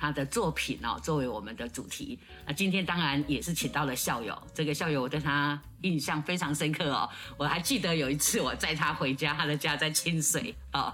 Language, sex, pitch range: Chinese, female, 140-175 Hz